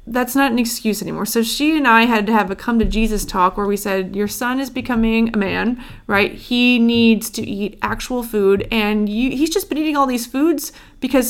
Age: 30-49